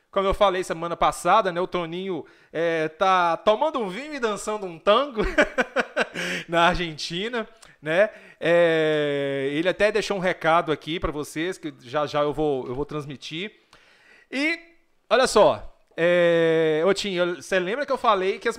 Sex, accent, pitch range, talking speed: male, Brazilian, 160-225 Hz, 160 wpm